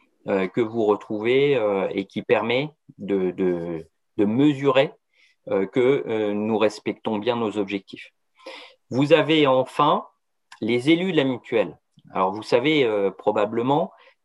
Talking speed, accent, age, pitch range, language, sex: 120 wpm, French, 40-59, 110-160 Hz, French, male